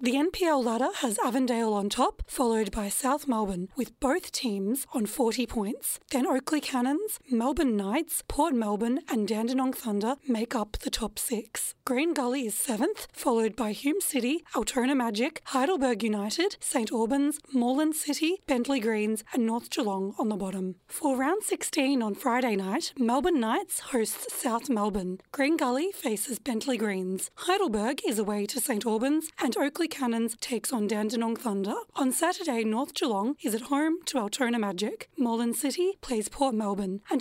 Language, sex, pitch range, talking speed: English, female, 225-290 Hz, 165 wpm